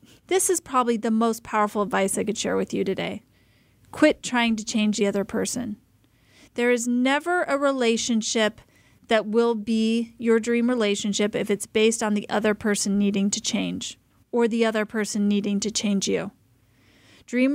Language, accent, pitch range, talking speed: English, American, 215-245 Hz, 170 wpm